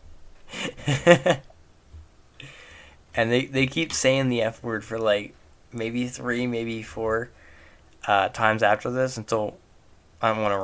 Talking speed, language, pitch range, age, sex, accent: 130 wpm, English, 95-125 Hz, 10-29, male, American